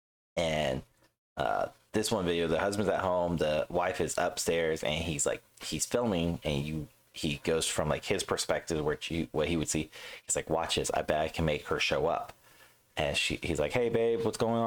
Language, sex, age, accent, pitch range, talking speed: English, male, 30-49, American, 80-110 Hz, 215 wpm